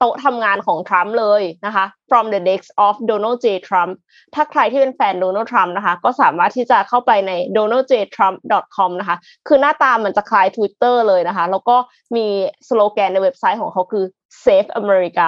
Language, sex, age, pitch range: Thai, female, 20-39, 195-275 Hz